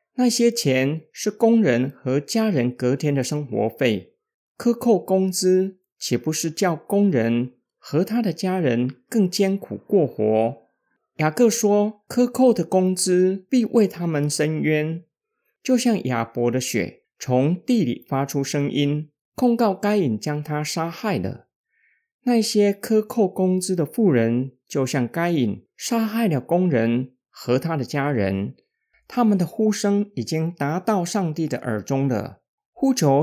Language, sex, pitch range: Chinese, male, 130-210 Hz